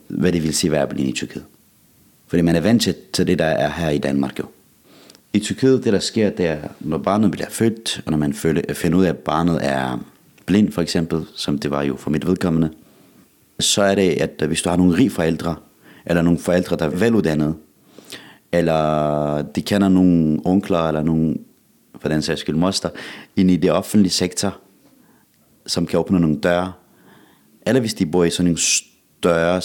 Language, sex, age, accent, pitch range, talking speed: Danish, male, 30-49, native, 75-95 Hz, 195 wpm